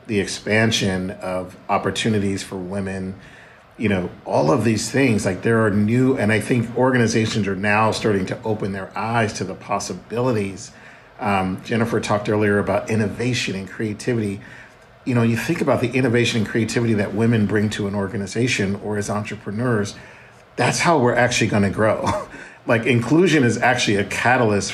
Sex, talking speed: male, 165 wpm